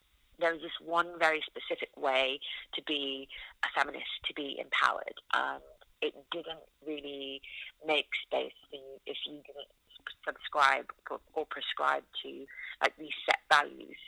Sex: female